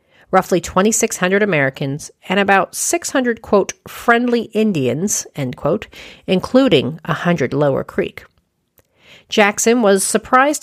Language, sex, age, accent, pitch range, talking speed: English, female, 40-59, American, 155-210 Hz, 105 wpm